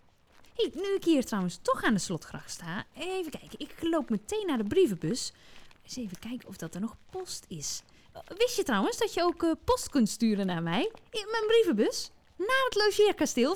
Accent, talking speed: Dutch, 195 wpm